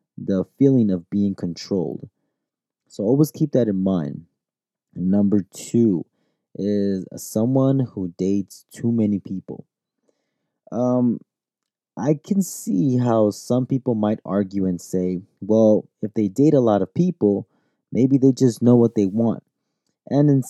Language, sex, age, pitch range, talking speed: English, male, 20-39, 95-125 Hz, 140 wpm